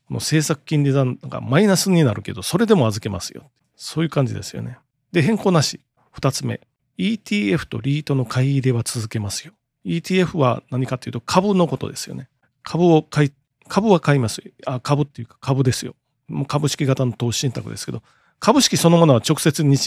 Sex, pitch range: male, 125-160 Hz